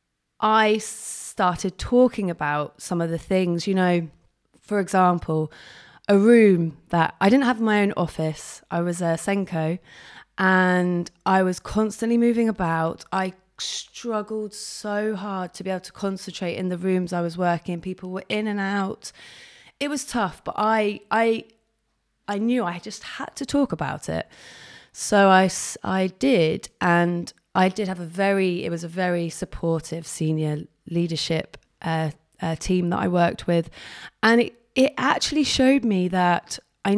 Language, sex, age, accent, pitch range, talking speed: English, female, 20-39, British, 170-220 Hz, 160 wpm